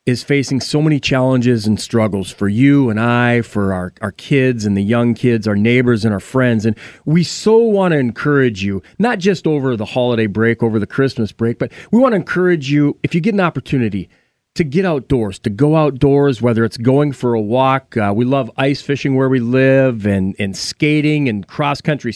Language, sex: English, male